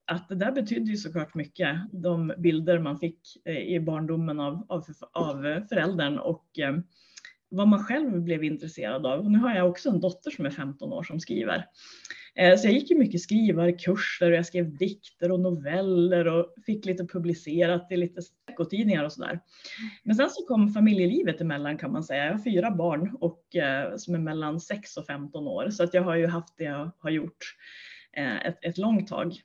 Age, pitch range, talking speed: 30-49, 160-195 Hz, 190 wpm